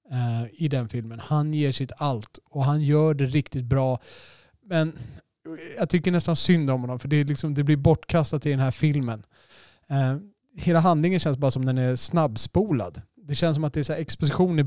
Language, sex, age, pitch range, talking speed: Swedish, male, 30-49, 130-155 Hz, 195 wpm